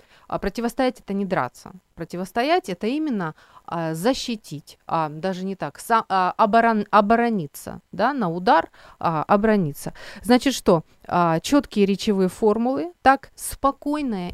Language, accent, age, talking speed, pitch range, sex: Ukrainian, native, 30-49, 130 wpm, 180-235 Hz, female